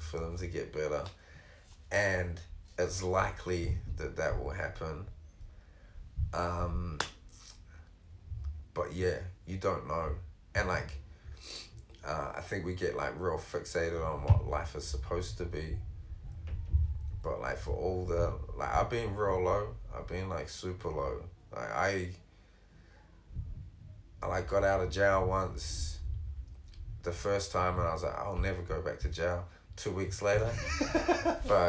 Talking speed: 145 wpm